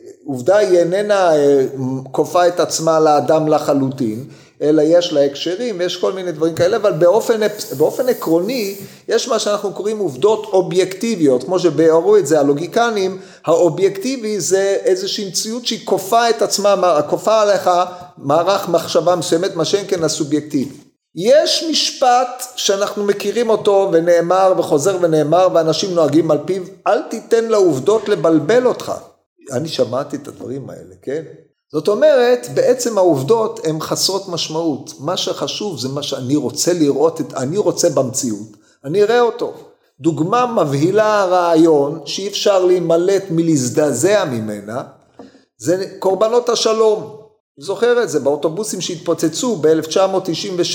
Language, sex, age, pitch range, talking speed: Hebrew, male, 40-59, 165-220 Hz, 130 wpm